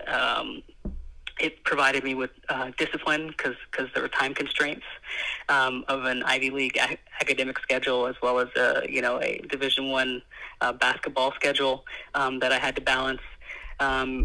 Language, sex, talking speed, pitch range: English, female, 175 wpm, 130-145 Hz